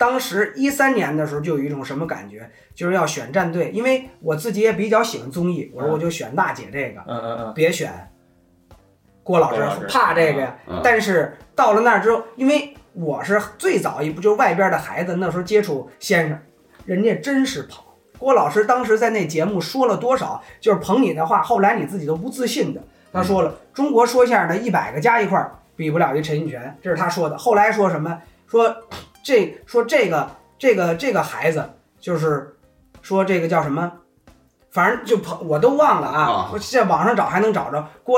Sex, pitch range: male, 160-235 Hz